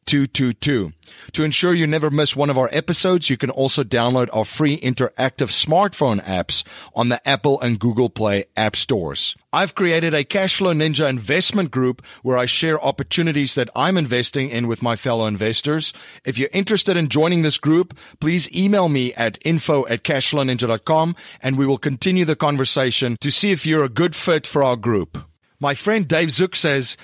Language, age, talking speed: English, 40-59, 180 wpm